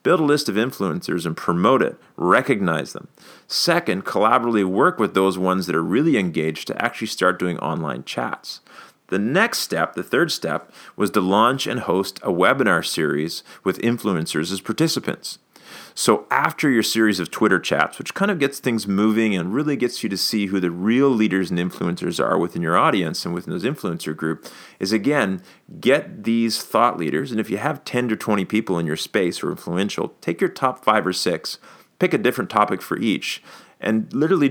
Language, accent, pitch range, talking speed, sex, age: English, American, 90-115 Hz, 195 wpm, male, 40-59